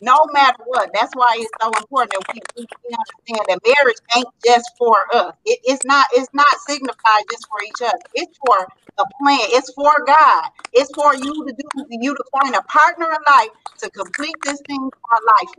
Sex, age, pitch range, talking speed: female, 40-59, 245-295 Hz, 205 wpm